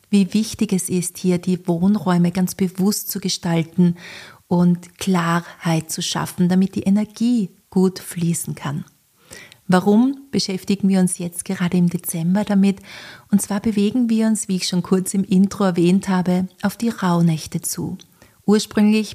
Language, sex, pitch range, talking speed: German, female, 175-195 Hz, 150 wpm